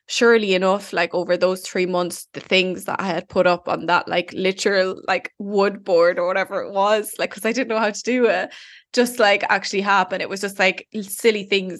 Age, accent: 10-29, Irish